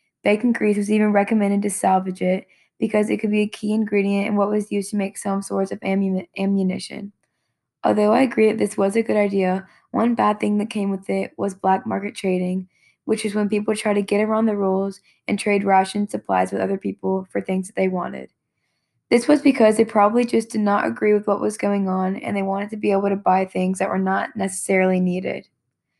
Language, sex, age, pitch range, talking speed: English, female, 10-29, 185-210 Hz, 220 wpm